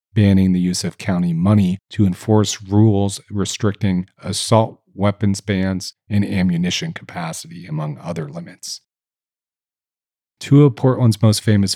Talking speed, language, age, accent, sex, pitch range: 120 wpm, English, 40-59, American, male, 90-110 Hz